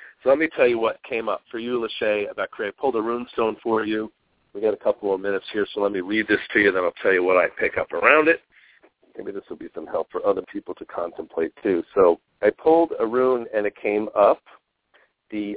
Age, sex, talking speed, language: 50-69, male, 260 wpm, English